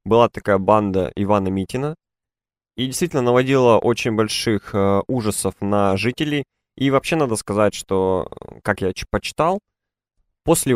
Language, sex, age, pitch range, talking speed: Russian, male, 20-39, 100-120 Hz, 125 wpm